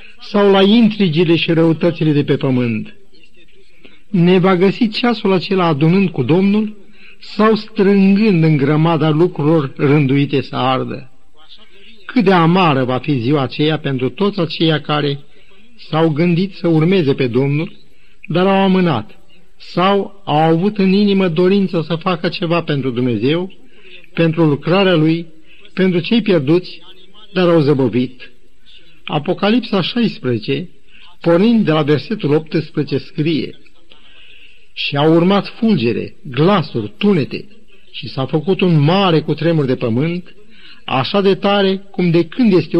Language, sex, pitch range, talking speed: Romanian, male, 150-195 Hz, 130 wpm